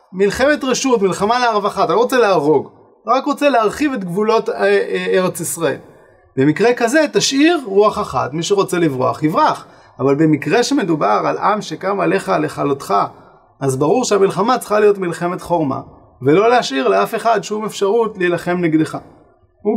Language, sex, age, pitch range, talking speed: Hebrew, male, 30-49, 140-200 Hz, 150 wpm